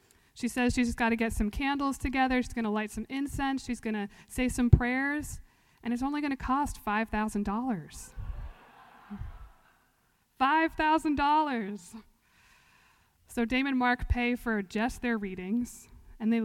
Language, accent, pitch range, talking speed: English, American, 215-255 Hz, 150 wpm